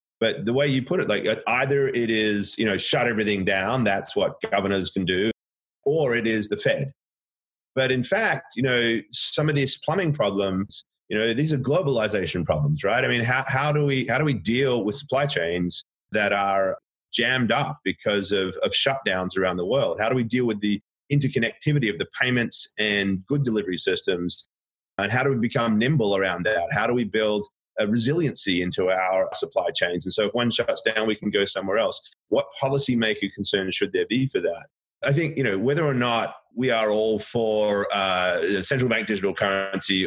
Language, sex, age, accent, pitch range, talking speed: English, male, 30-49, Australian, 95-130 Hz, 200 wpm